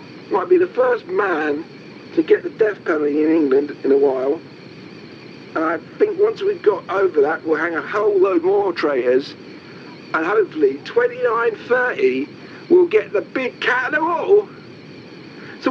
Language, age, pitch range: English, 50-69, 305-425 Hz